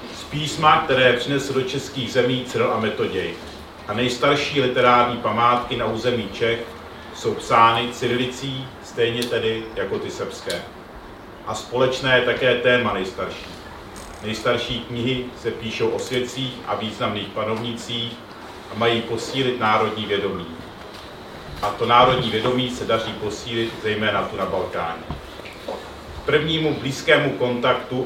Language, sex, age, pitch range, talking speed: Czech, male, 40-59, 115-130 Hz, 125 wpm